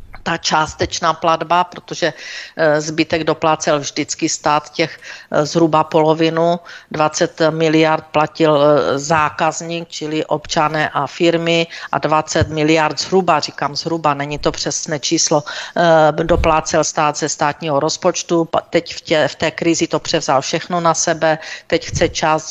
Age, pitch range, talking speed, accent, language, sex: 50-69, 150-165 Hz, 125 wpm, native, Czech, female